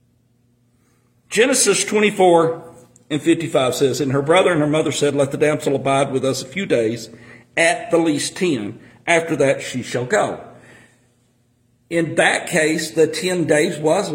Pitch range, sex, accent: 120-160 Hz, male, American